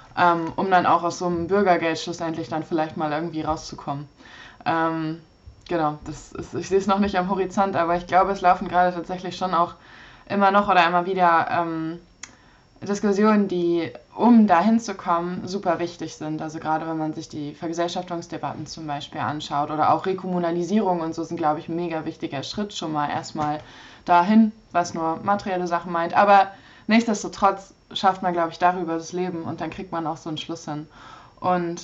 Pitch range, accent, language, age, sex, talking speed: 160-185 Hz, German, German, 20-39, female, 185 wpm